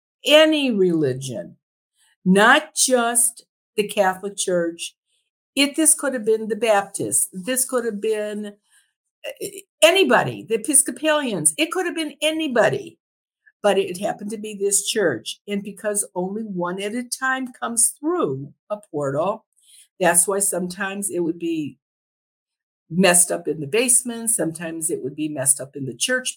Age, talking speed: 50-69, 145 wpm